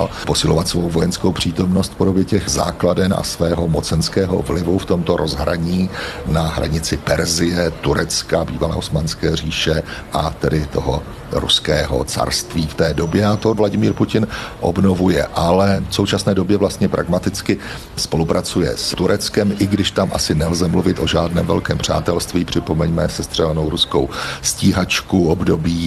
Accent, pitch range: native, 85-100 Hz